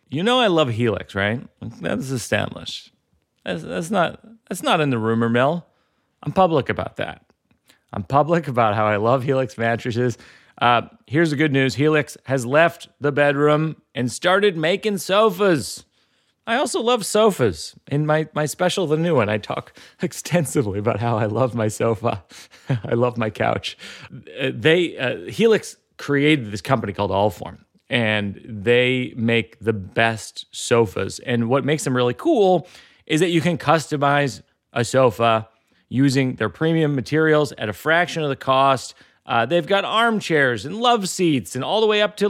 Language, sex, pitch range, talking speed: English, male, 120-170 Hz, 165 wpm